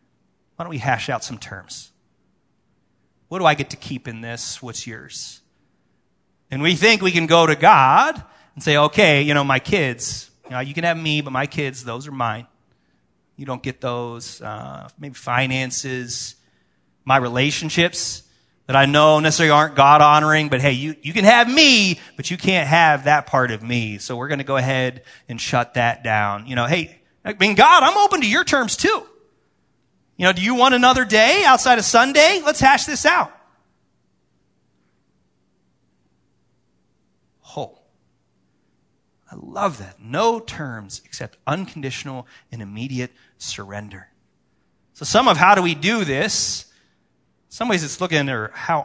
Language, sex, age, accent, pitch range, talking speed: English, male, 30-49, American, 120-170 Hz, 165 wpm